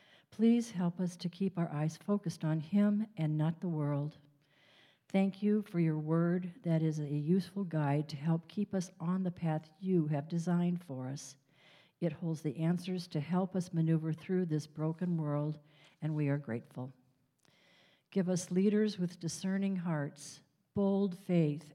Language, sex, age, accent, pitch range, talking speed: English, female, 60-79, American, 155-185 Hz, 165 wpm